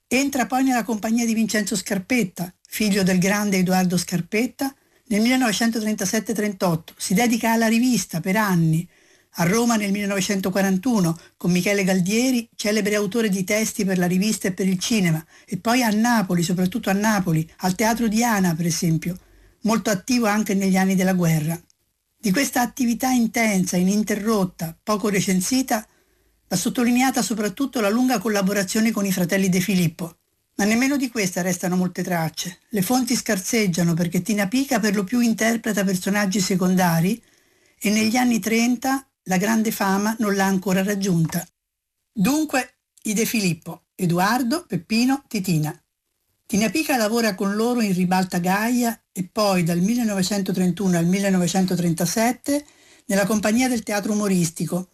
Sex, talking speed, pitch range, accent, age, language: female, 145 wpm, 185-230 Hz, native, 50-69, Italian